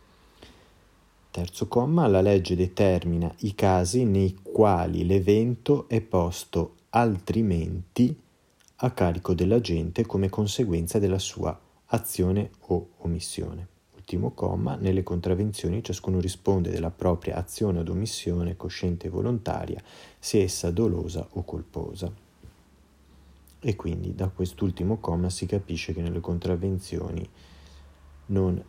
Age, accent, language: 30-49, native, Italian